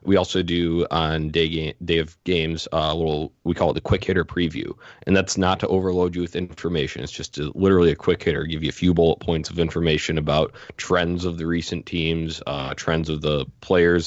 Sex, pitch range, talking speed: male, 75-85 Hz, 225 wpm